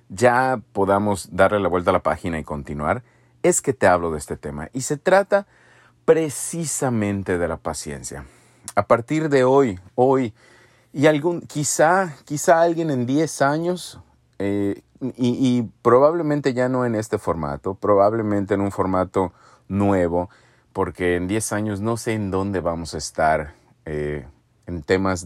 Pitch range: 85-125 Hz